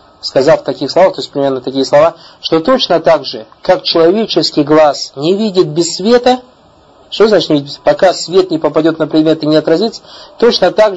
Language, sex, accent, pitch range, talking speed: Russian, male, native, 140-180 Hz, 175 wpm